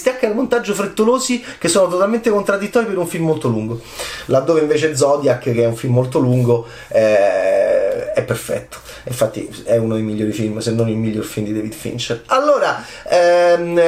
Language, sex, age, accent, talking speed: Italian, male, 30-49, native, 175 wpm